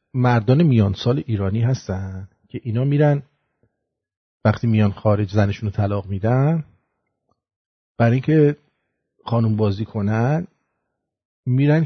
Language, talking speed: English, 105 wpm